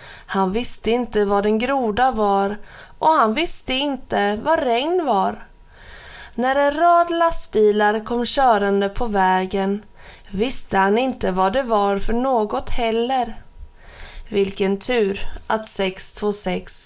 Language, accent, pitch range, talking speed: Swedish, native, 195-250 Hz, 125 wpm